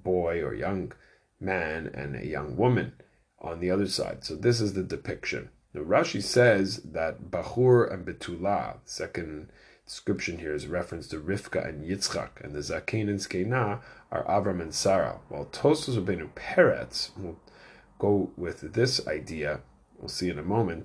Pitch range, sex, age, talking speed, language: 85-110 Hz, male, 30-49, 175 wpm, English